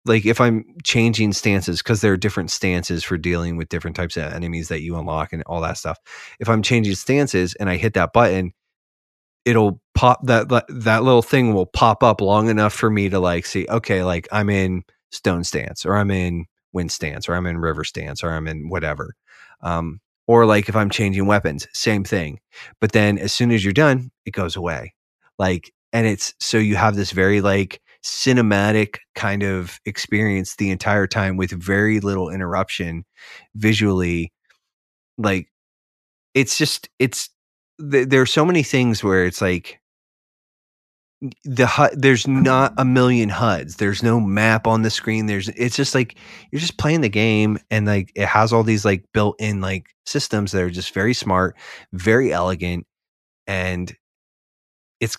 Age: 30-49